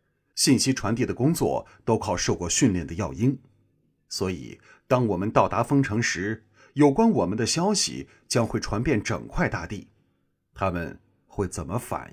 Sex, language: male, Chinese